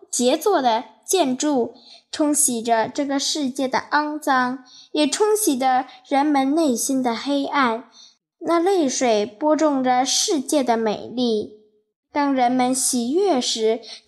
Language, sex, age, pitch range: Chinese, female, 10-29, 230-315 Hz